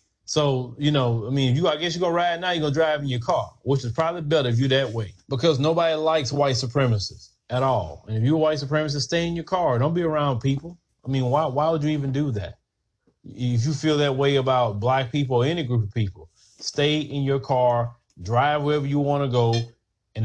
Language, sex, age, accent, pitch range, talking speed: English, male, 30-49, American, 120-155 Hz, 235 wpm